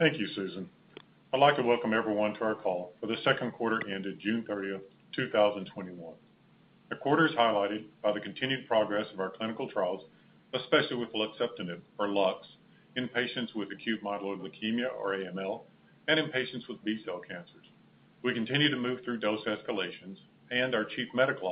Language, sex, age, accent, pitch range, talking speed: English, male, 50-69, American, 105-125 Hz, 175 wpm